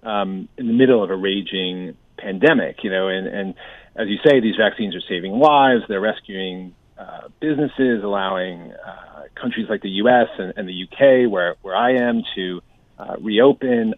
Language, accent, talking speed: English, American, 175 wpm